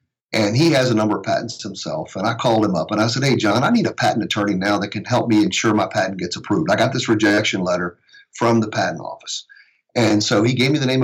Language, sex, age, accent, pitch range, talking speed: English, male, 40-59, American, 105-130 Hz, 265 wpm